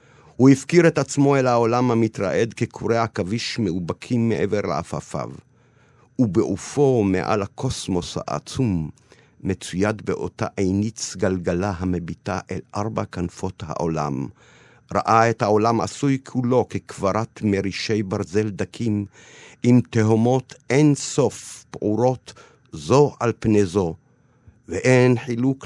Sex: male